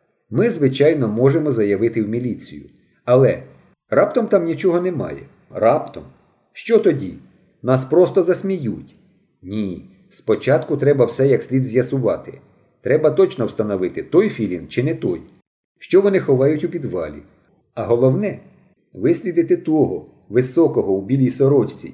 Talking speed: 125 wpm